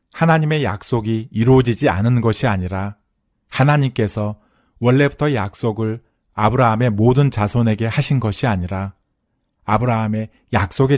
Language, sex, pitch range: Korean, male, 100-125 Hz